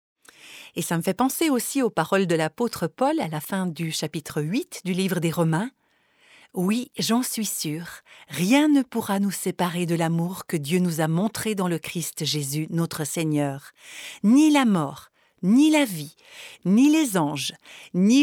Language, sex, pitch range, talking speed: French, female, 165-250 Hz, 180 wpm